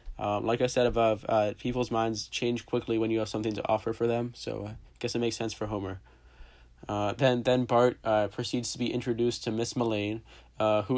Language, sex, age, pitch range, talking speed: English, male, 20-39, 105-120 Hz, 225 wpm